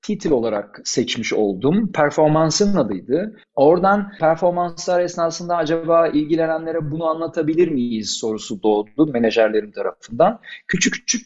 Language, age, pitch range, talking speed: Turkish, 40-59, 130-185 Hz, 105 wpm